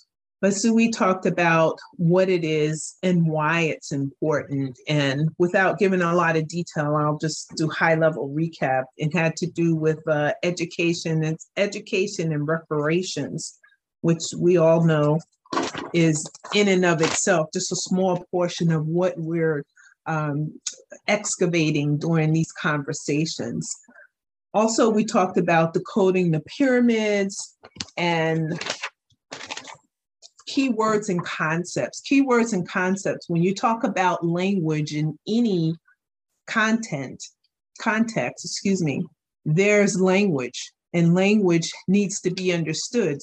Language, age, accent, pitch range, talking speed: English, 40-59, American, 155-190 Hz, 125 wpm